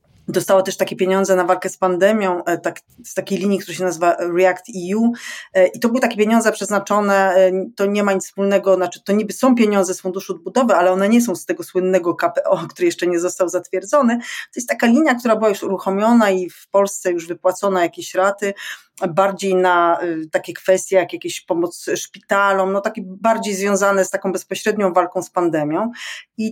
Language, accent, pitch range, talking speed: Polish, native, 180-200 Hz, 190 wpm